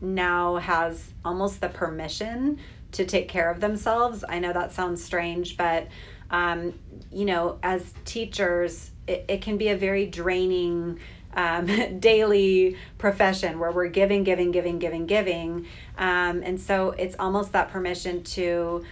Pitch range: 175-190 Hz